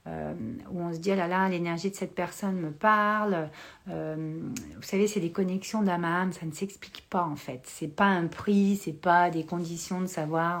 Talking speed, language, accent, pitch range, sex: 220 wpm, French, French, 160-200 Hz, female